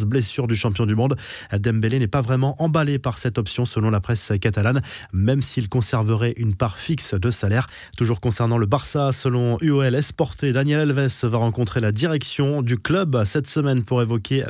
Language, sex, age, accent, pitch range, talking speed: French, male, 20-39, French, 110-135 Hz, 180 wpm